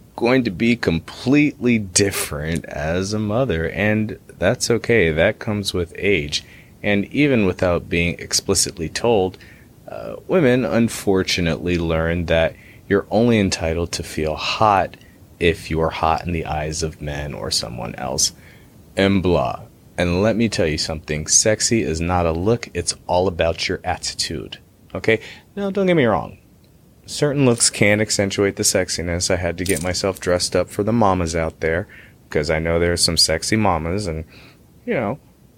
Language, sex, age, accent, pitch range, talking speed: English, male, 30-49, American, 85-110 Hz, 165 wpm